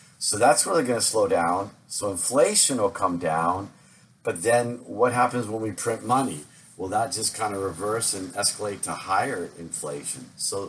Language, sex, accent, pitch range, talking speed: English, male, American, 100-130 Hz, 175 wpm